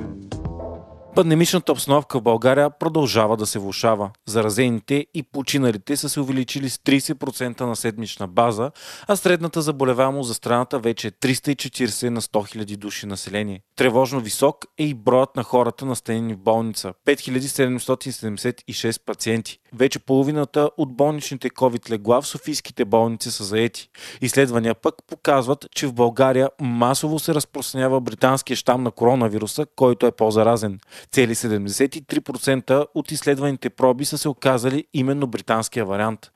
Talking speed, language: 135 wpm, Bulgarian